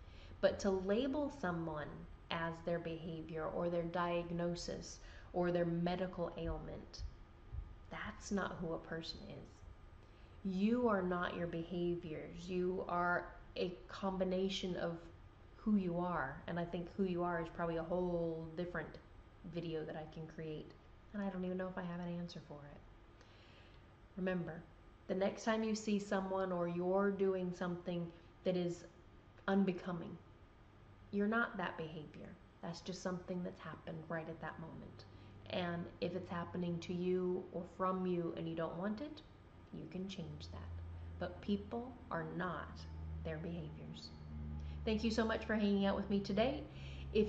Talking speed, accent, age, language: 155 wpm, American, 20-39, English